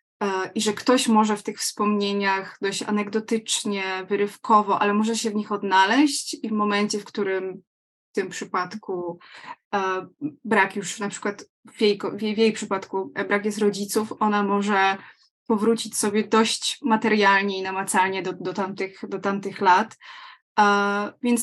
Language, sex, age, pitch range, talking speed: English, female, 20-39, 195-225 Hz, 135 wpm